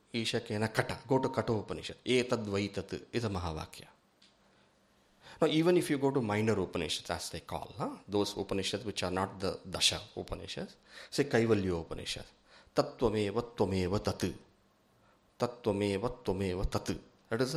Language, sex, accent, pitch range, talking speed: English, male, Indian, 95-130 Hz, 120 wpm